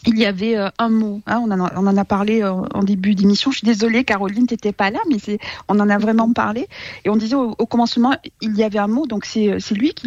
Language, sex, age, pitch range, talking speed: French, female, 40-59, 200-250 Hz, 285 wpm